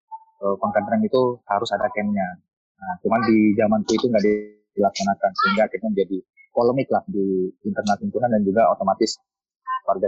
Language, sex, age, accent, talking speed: Indonesian, male, 20-39, native, 145 wpm